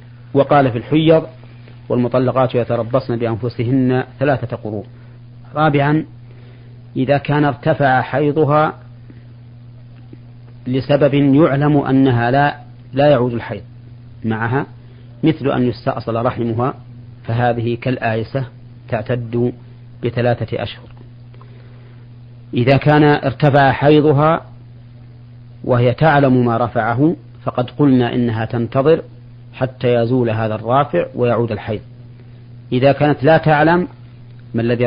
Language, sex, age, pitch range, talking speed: Arabic, male, 40-59, 120-130 Hz, 95 wpm